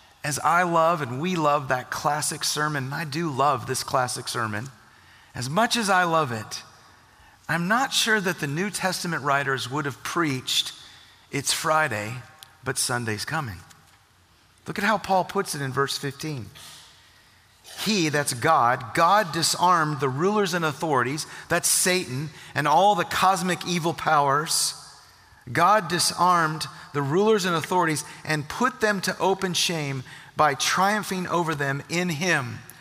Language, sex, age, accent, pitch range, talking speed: English, male, 40-59, American, 140-180 Hz, 150 wpm